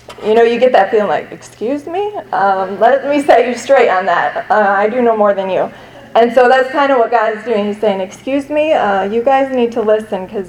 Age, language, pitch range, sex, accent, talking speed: 30-49, English, 205-250 Hz, female, American, 250 wpm